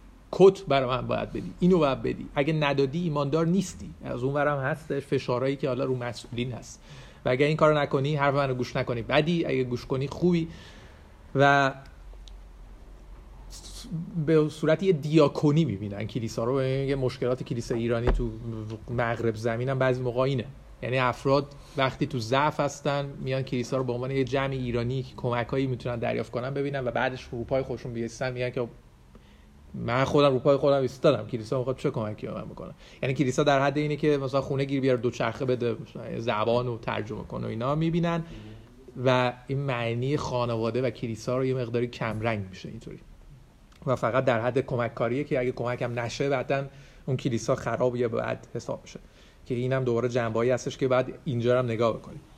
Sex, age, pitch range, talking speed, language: male, 40-59, 120-140 Hz, 175 wpm, Persian